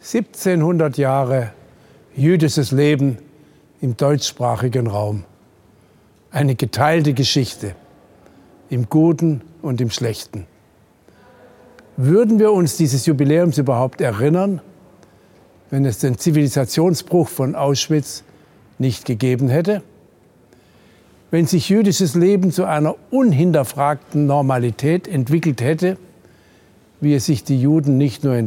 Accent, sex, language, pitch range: German, male, German, 130-165 Hz